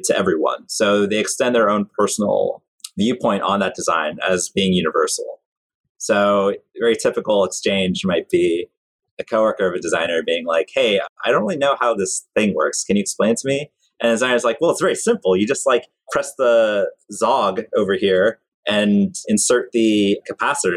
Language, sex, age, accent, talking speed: English, male, 30-49, American, 180 wpm